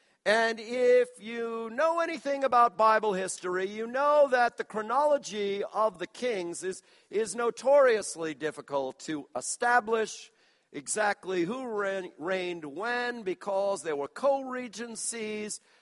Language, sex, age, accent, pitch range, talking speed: English, male, 50-69, American, 185-255 Hz, 115 wpm